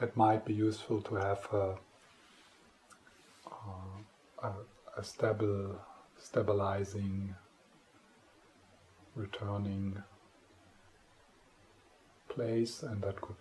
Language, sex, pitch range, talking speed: English, male, 95-110 Hz, 75 wpm